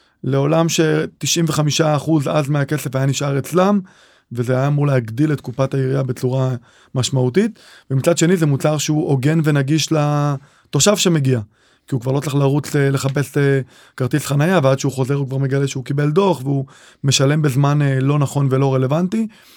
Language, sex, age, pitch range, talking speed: Hebrew, male, 20-39, 130-155 Hz, 155 wpm